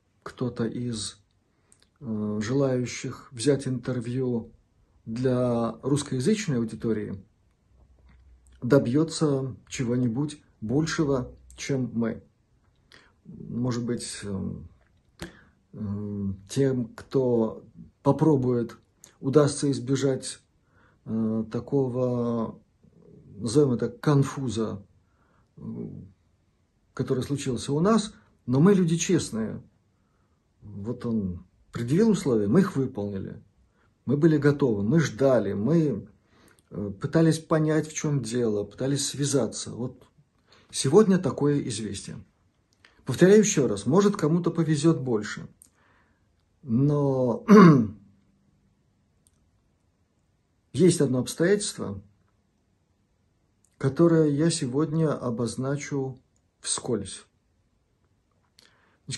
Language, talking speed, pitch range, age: Russian, 75 wpm, 100-145 Hz, 50-69